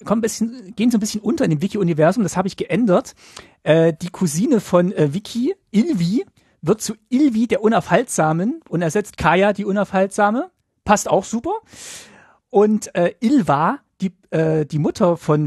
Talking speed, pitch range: 170 wpm, 165-215 Hz